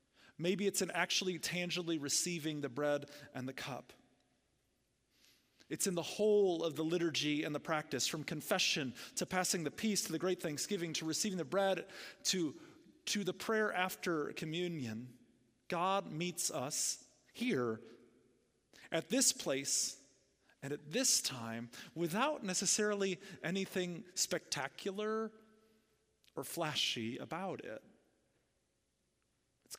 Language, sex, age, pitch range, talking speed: English, male, 30-49, 140-195 Hz, 125 wpm